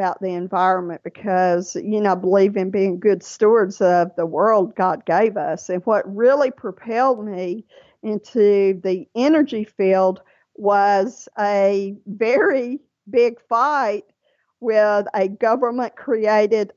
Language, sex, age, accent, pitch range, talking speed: English, female, 50-69, American, 200-250 Hz, 125 wpm